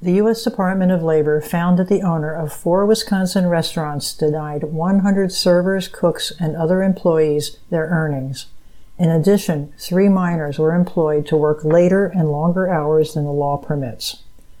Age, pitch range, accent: 60-79, 150-180 Hz, American